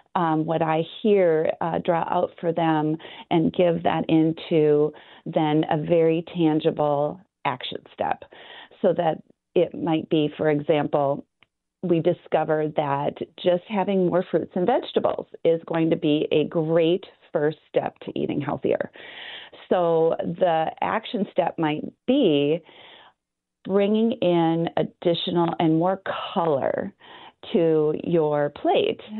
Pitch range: 160-195 Hz